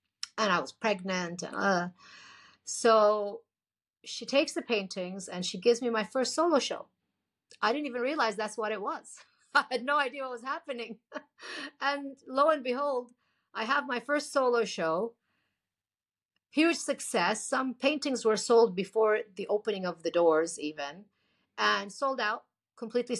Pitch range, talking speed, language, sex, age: 185-260 Hz, 160 wpm, English, female, 50-69